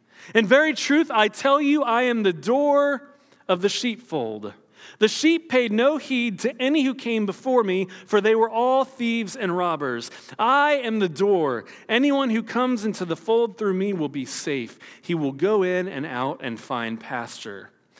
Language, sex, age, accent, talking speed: English, male, 40-59, American, 185 wpm